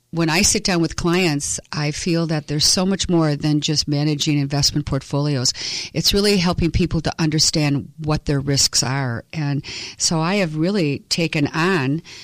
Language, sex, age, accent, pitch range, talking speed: English, female, 50-69, American, 145-165 Hz, 170 wpm